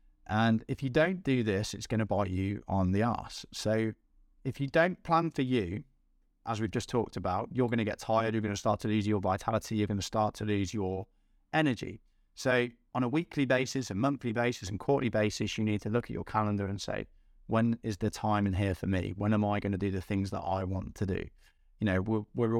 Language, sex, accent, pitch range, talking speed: English, male, British, 95-115 Hz, 245 wpm